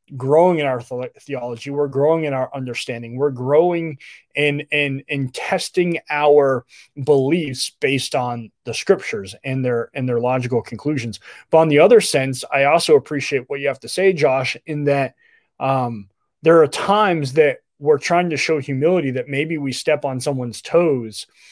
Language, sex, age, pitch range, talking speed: English, male, 20-39, 130-165 Hz, 165 wpm